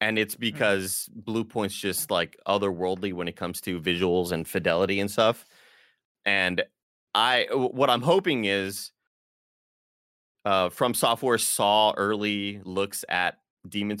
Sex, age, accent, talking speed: male, 20-39, American, 135 wpm